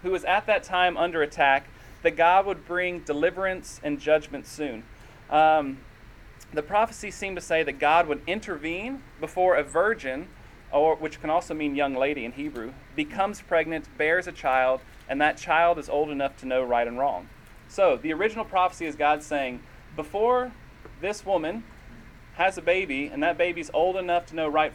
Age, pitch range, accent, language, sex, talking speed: 30-49, 135-185 Hz, American, English, male, 180 wpm